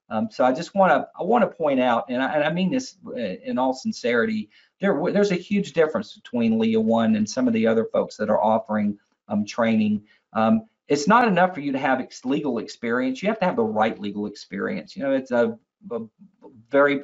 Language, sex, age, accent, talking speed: English, male, 40-59, American, 225 wpm